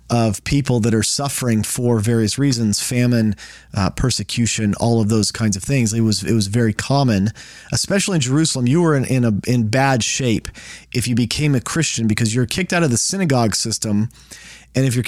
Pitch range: 115-145 Hz